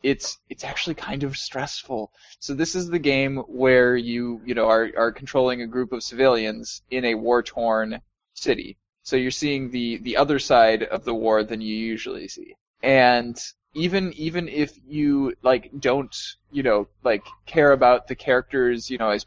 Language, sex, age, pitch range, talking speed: English, male, 20-39, 115-150 Hz, 180 wpm